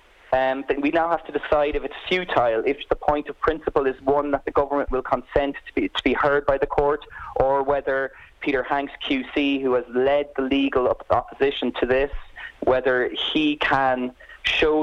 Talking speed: 190 wpm